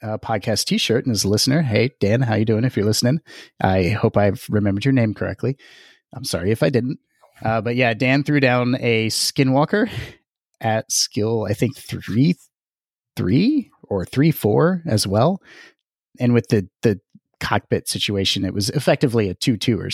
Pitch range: 110-130 Hz